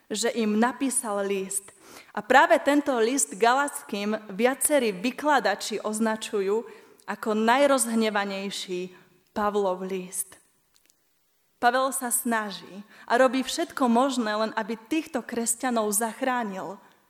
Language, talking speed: Slovak, 100 wpm